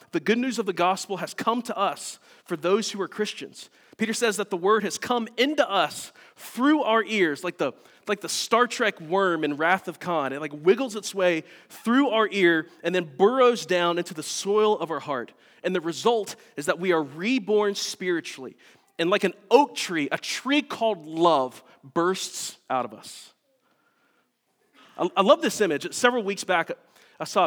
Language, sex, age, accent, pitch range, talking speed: English, male, 30-49, American, 170-225 Hz, 190 wpm